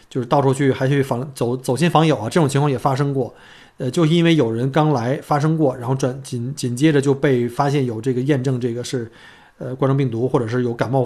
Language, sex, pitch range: Chinese, male, 125-155 Hz